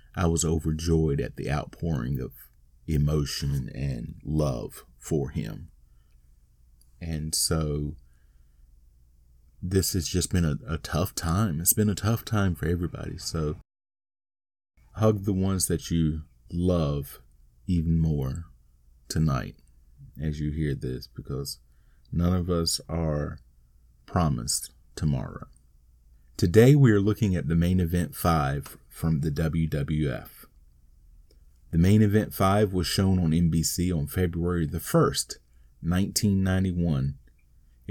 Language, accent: English, American